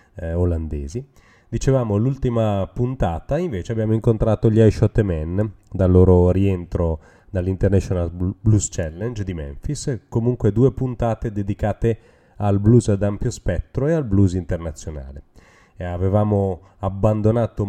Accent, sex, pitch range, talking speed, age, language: native, male, 90-120 Hz, 115 wpm, 30-49, Italian